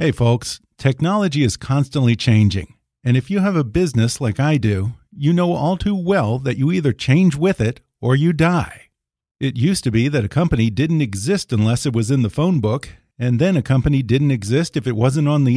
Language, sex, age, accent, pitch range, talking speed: English, male, 50-69, American, 120-165 Hz, 215 wpm